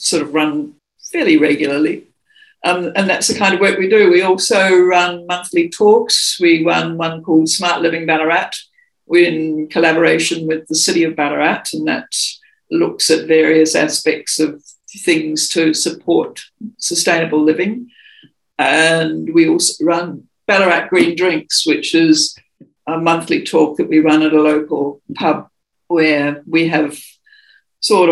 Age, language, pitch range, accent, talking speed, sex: 60-79, English, 155-195 Hz, British, 145 wpm, female